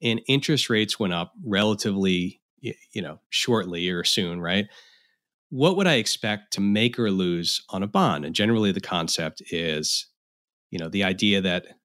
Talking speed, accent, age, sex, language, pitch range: 165 wpm, American, 30-49, male, English, 90-115 Hz